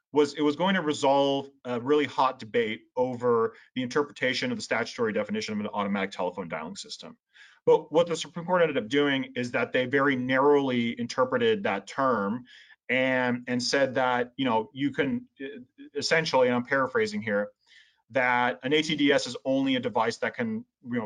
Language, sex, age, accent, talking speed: English, male, 30-49, American, 175 wpm